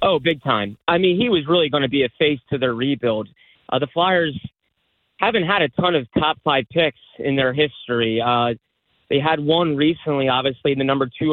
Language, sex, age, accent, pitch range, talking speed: English, male, 30-49, American, 125-155 Hz, 205 wpm